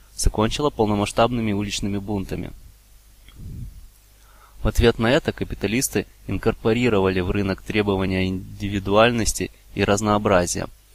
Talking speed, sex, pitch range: 90 wpm, male, 100-115 Hz